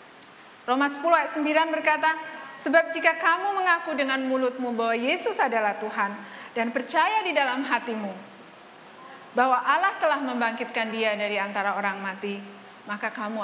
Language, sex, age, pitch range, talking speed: Malay, female, 30-49, 220-295 Hz, 140 wpm